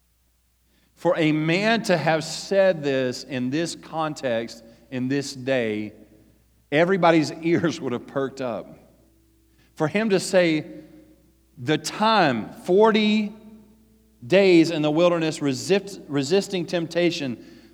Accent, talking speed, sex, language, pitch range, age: American, 110 wpm, male, English, 135-190 Hz, 40-59